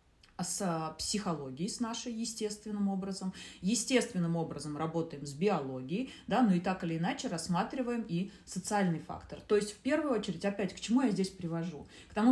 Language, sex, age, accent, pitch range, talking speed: Russian, female, 30-49, native, 165-220 Hz, 165 wpm